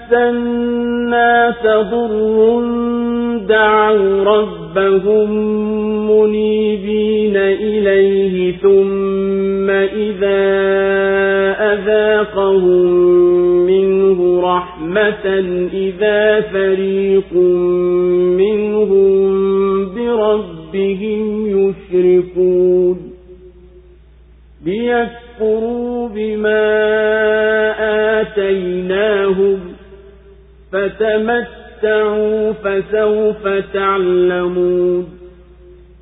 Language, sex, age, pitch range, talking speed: Swahili, male, 40-59, 190-215 Hz, 35 wpm